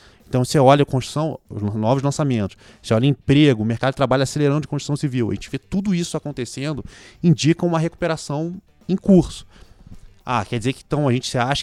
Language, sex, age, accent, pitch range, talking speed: Portuguese, male, 20-39, Brazilian, 110-150 Hz, 195 wpm